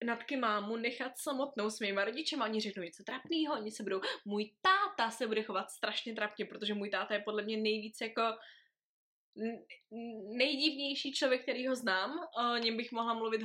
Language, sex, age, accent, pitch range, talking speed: Czech, female, 20-39, native, 210-275 Hz, 165 wpm